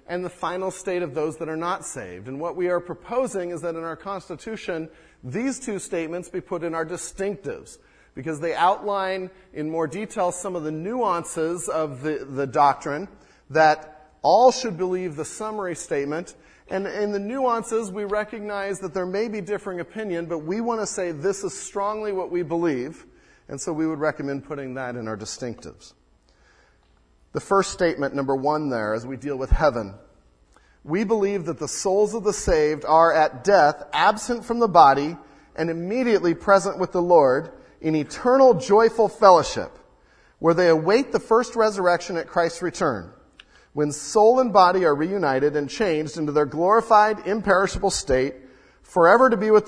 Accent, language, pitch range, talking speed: American, English, 150-205 Hz, 175 wpm